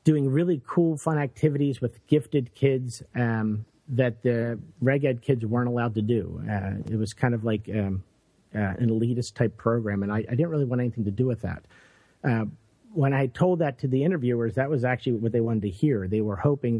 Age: 50-69